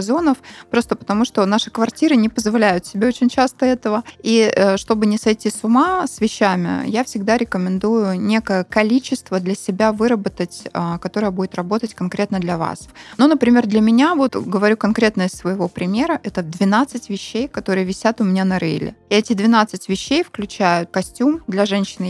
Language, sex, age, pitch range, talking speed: Russian, female, 20-39, 180-220 Hz, 165 wpm